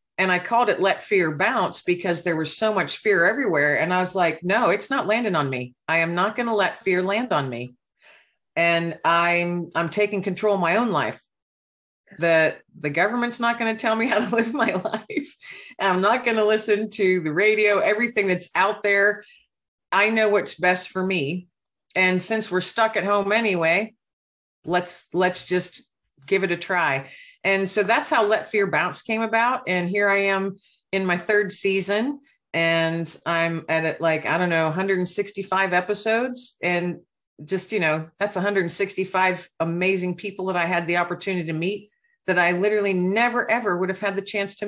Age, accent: 50-69, American